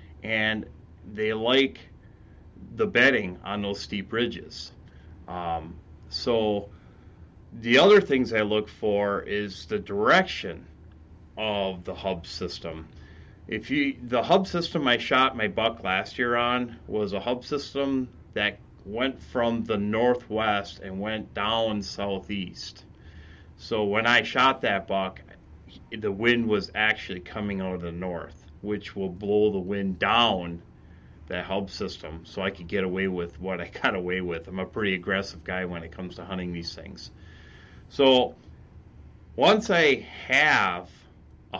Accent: American